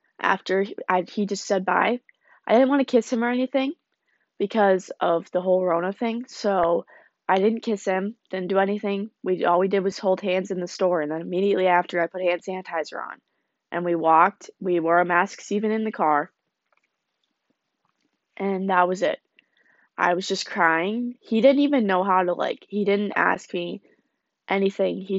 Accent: American